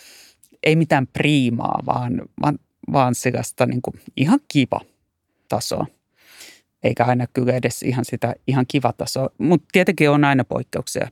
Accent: native